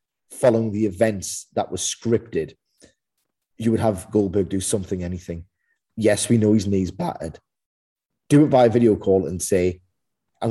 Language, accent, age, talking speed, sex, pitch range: English, British, 30-49, 160 wpm, male, 95-125 Hz